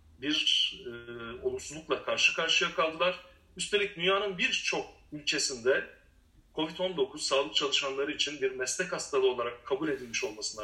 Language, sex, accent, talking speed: Turkish, male, native, 120 wpm